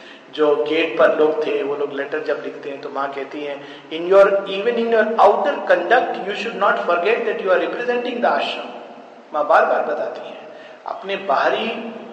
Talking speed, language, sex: 195 wpm, Hindi, male